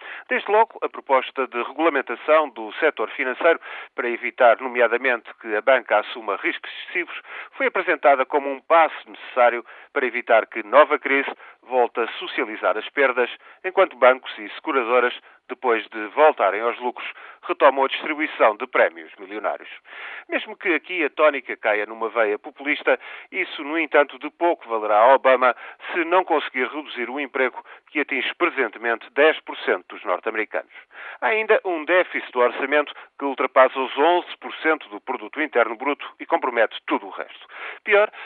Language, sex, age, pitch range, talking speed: Portuguese, male, 40-59, 120-165 Hz, 155 wpm